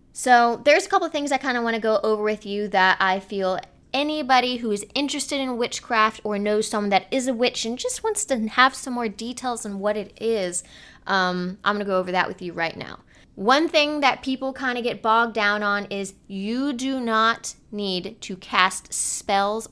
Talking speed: 215 wpm